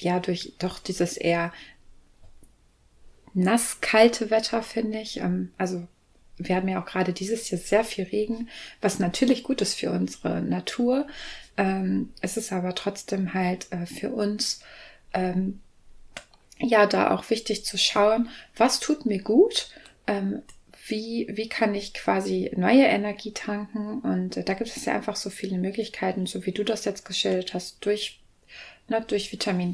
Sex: female